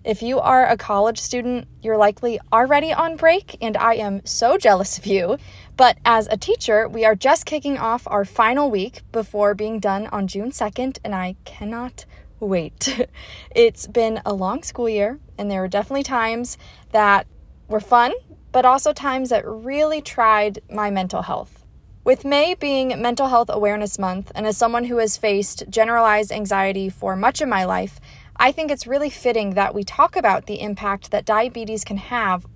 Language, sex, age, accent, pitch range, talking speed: English, female, 20-39, American, 205-255 Hz, 180 wpm